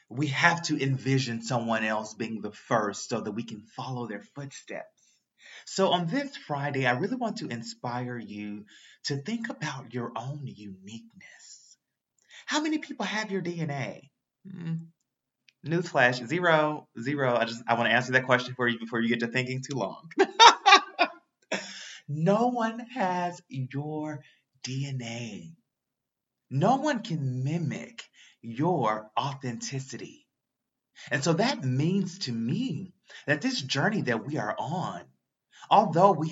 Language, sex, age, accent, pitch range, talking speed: English, male, 30-49, American, 115-180 Hz, 140 wpm